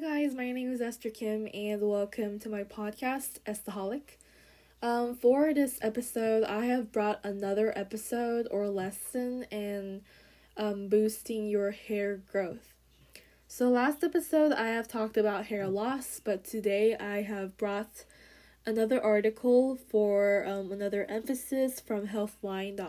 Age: 10-29